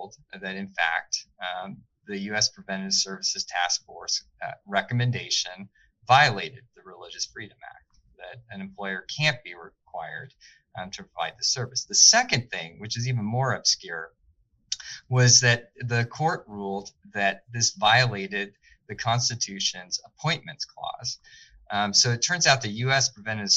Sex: male